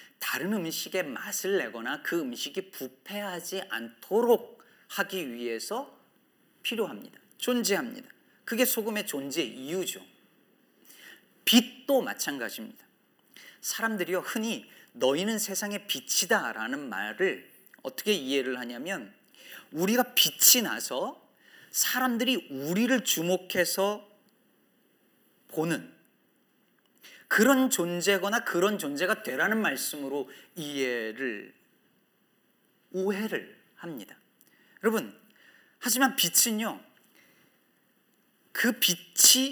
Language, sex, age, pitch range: Korean, male, 40-59, 170-245 Hz